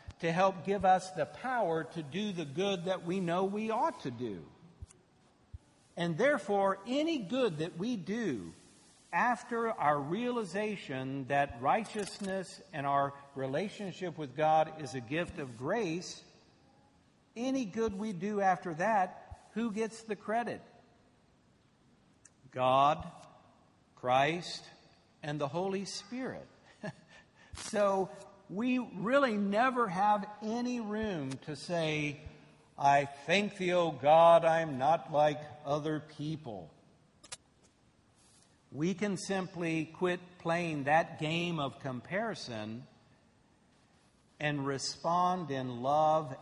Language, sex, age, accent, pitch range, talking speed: English, male, 60-79, American, 145-200 Hz, 115 wpm